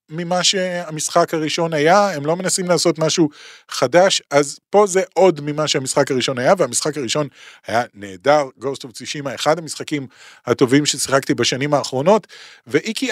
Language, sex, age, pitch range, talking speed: Hebrew, male, 30-49, 130-175 Hz, 140 wpm